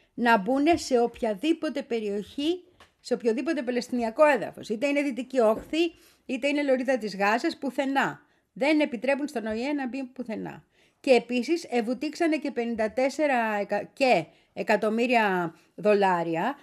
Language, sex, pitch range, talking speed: Greek, female, 215-310 Hz, 125 wpm